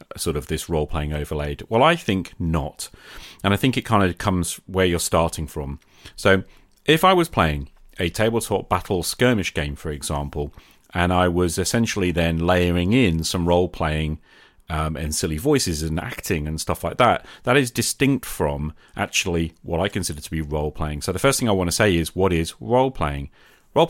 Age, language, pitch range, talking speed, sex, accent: 40-59, English, 80-100 Hz, 200 wpm, male, British